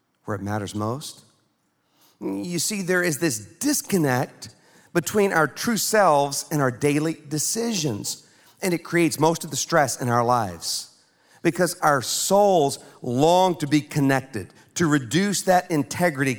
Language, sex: English, male